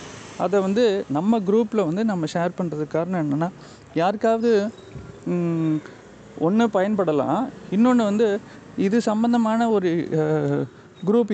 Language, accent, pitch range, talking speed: Tamil, native, 155-210 Hz, 100 wpm